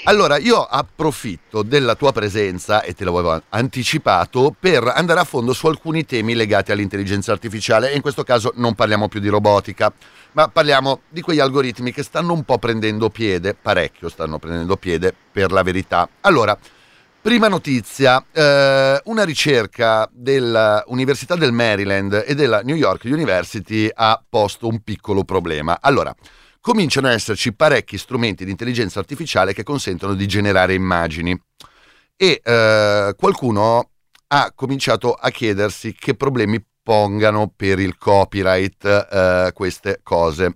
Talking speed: 140 wpm